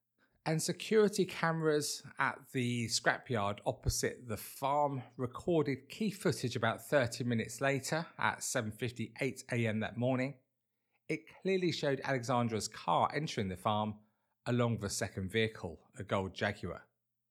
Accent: British